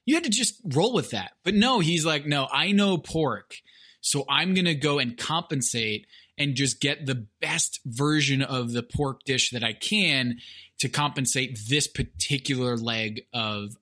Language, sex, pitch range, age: English, male, 125-160 Hz, 20-39